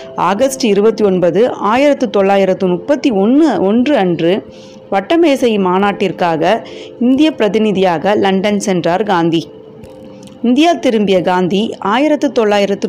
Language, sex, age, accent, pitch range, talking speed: Tamil, female, 30-49, native, 185-235 Hz, 100 wpm